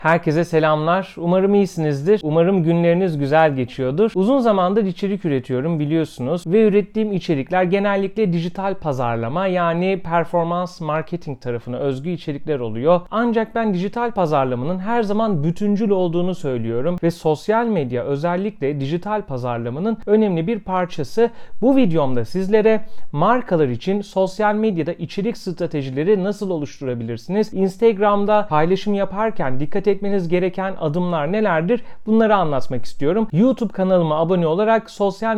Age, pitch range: 40-59, 155-205 Hz